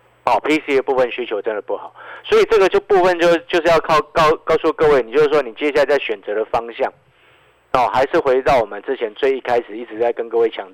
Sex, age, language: male, 50-69, Chinese